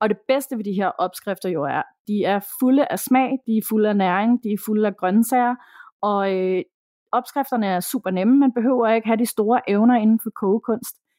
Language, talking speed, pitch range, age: Danish, 215 wpm, 195-235 Hz, 30-49